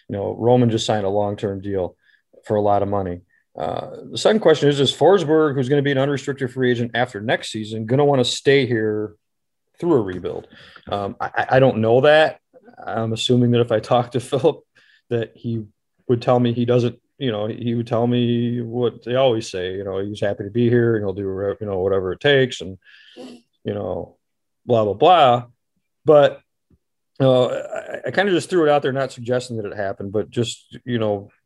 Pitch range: 110-130 Hz